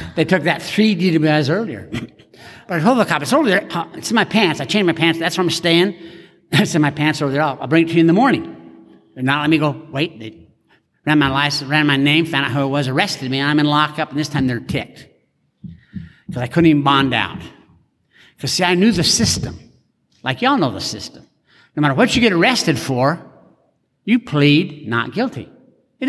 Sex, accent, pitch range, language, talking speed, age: male, American, 125-170 Hz, English, 225 wpm, 60-79